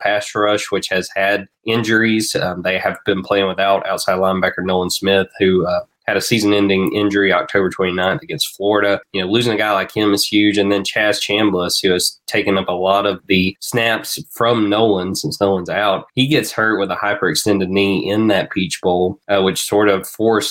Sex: male